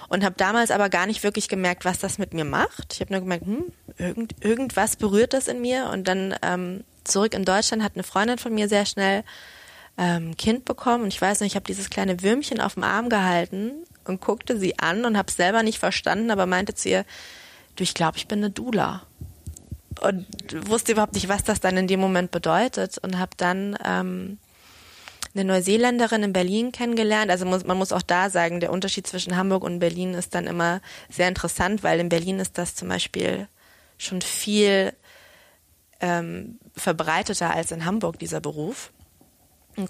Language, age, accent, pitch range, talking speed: German, 20-39, German, 180-210 Hz, 195 wpm